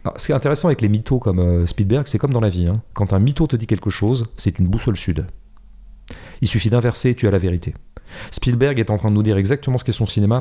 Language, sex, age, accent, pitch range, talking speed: French, male, 40-59, French, 100-145 Hz, 270 wpm